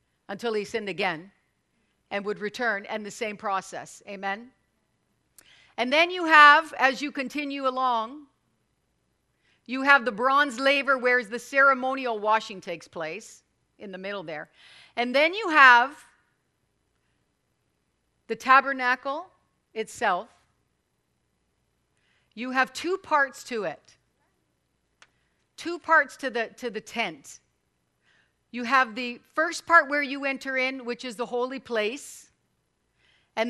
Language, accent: English, American